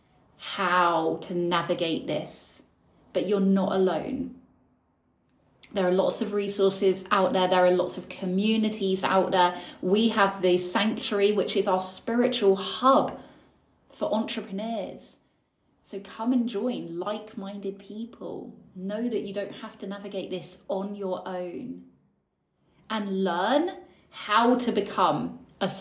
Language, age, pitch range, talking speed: English, 20-39, 180-210 Hz, 130 wpm